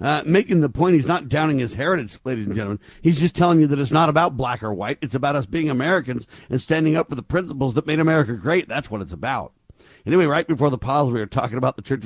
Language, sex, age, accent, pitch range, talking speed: English, male, 50-69, American, 125-160 Hz, 265 wpm